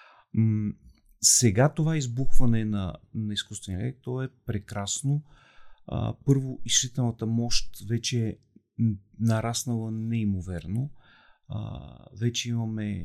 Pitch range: 105-130 Hz